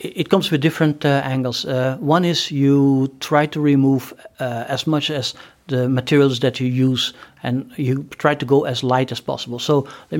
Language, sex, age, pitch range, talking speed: Swedish, male, 60-79, 125-150 Hz, 195 wpm